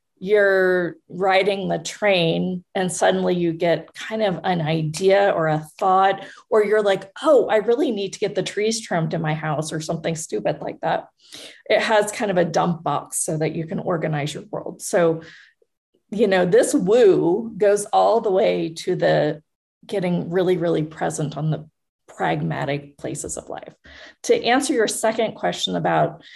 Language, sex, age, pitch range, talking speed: English, female, 30-49, 175-230 Hz, 175 wpm